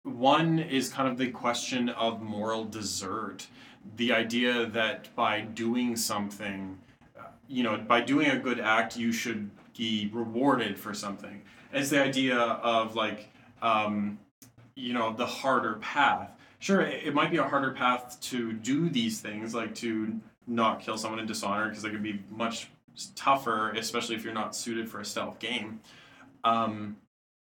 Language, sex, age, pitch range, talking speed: English, male, 20-39, 110-120 Hz, 160 wpm